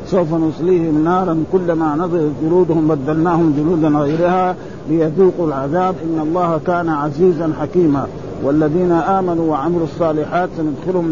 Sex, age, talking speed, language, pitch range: male, 50-69, 115 wpm, Arabic, 160-180 Hz